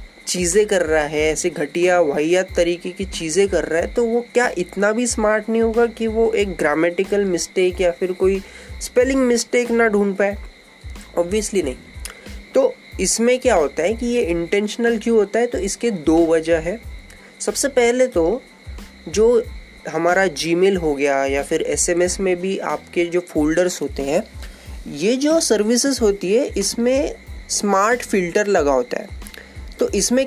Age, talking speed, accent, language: 20-39, 165 wpm, native, Hindi